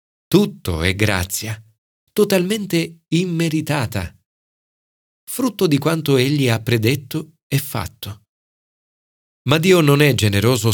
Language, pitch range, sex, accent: Italian, 100-145 Hz, male, native